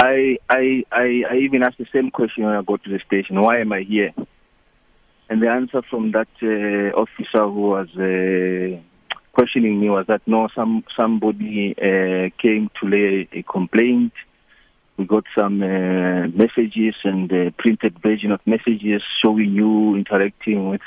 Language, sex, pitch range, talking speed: English, male, 100-120 Hz, 160 wpm